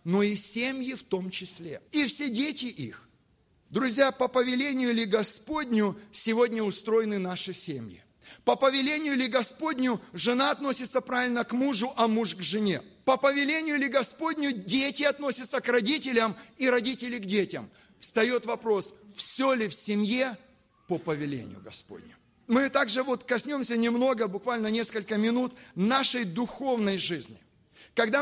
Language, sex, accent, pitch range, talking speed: Russian, male, native, 220-270 Hz, 140 wpm